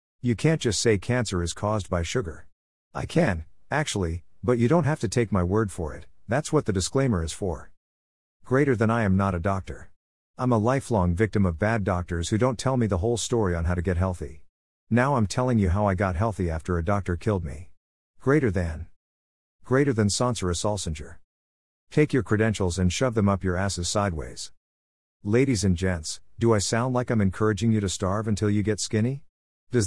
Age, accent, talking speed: 50-69, American, 200 wpm